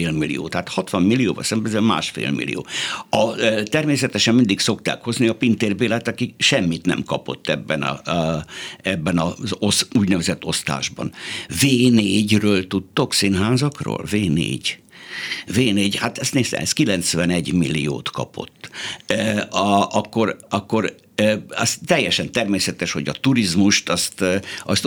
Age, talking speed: 60-79, 120 wpm